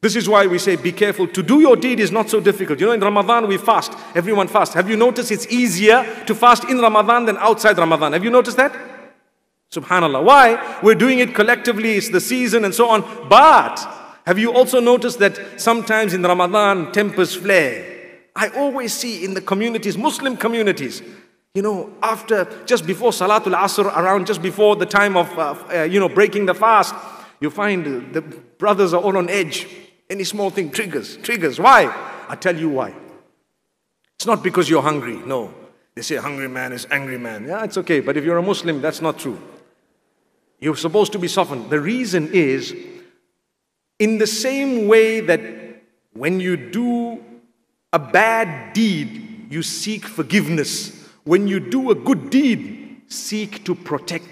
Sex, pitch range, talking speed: male, 180-230 Hz, 180 wpm